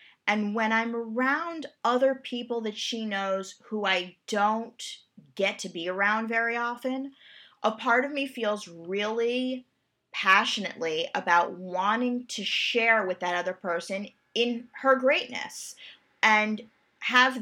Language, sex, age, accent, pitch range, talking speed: English, female, 30-49, American, 190-245 Hz, 130 wpm